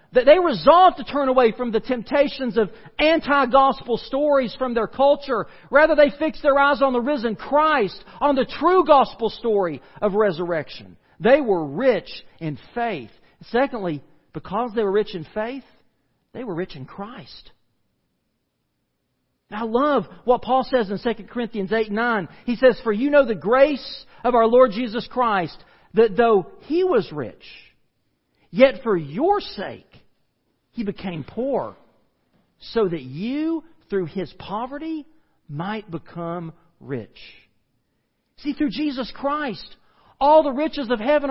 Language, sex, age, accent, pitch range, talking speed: English, male, 50-69, American, 215-300 Hz, 145 wpm